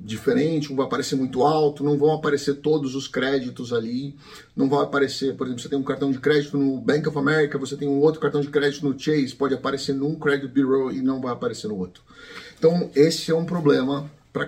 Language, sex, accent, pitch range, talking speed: Portuguese, male, Brazilian, 135-170 Hz, 225 wpm